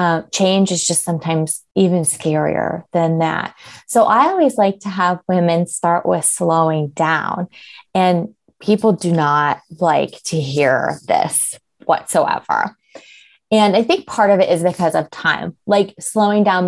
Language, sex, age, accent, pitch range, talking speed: English, female, 20-39, American, 155-195 Hz, 150 wpm